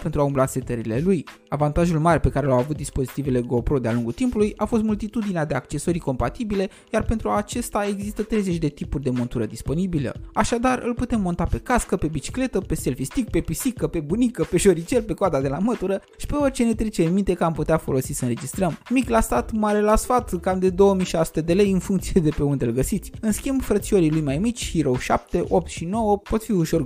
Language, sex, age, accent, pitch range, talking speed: Romanian, male, 20-39, native, 135-205 Hz, 220 wpm